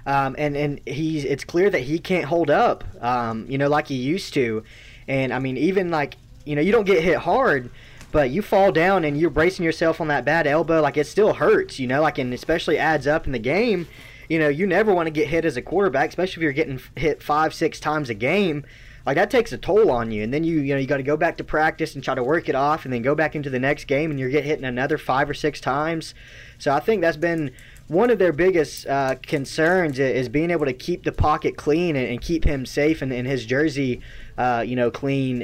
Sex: male